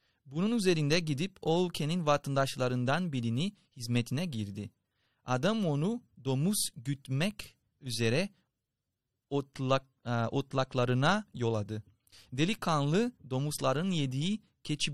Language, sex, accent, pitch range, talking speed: Turkish, male, native, 120-165 Hz, 80 wpm